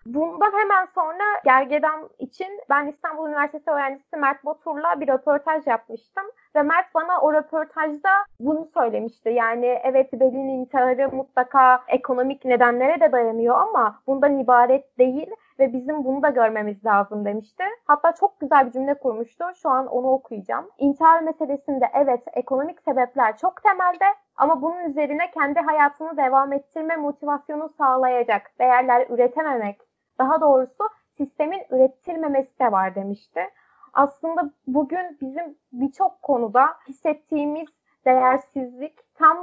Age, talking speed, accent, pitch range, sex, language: 20-39, 130 wpm, native, 250-315 Hz, female, Turkish